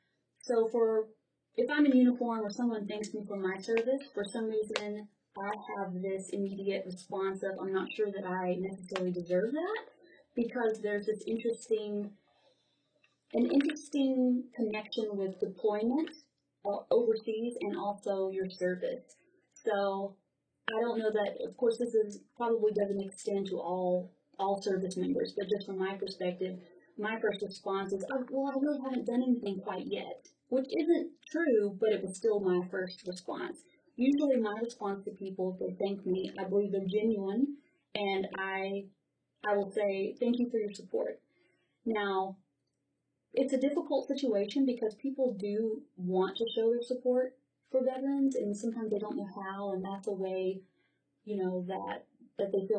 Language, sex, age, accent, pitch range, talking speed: English, female, 30-49, American, 195-245 Hz, 165 wpm